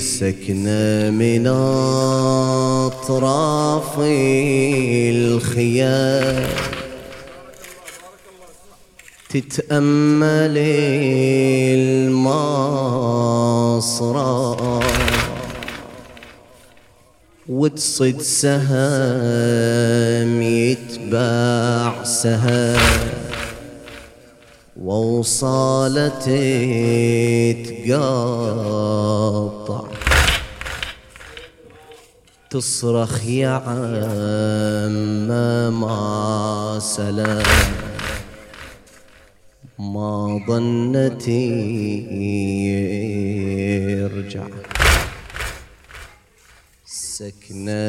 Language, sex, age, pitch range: English, male, 30-49, 105-130 Hz